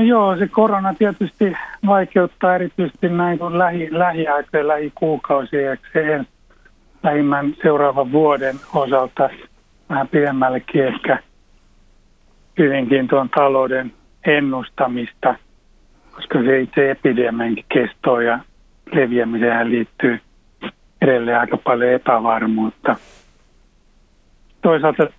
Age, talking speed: 60-79, 95 wpm